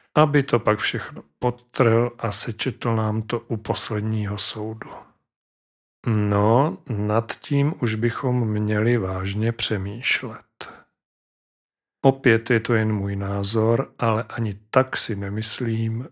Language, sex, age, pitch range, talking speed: Czech, male, 40-59, 105-125 Hz, 115 wpm